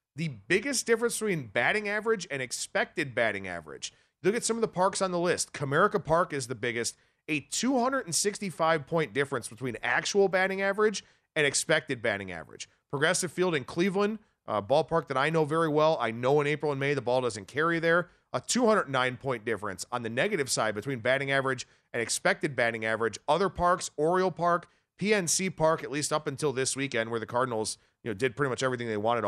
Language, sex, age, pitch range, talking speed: English, male, 40-59, 130-185 Hz, 190 wpm